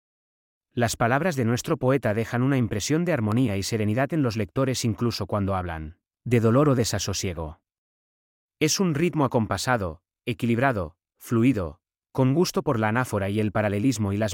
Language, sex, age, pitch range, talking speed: Spanish, male, 30-49, 95-130 Hz, 160 wpm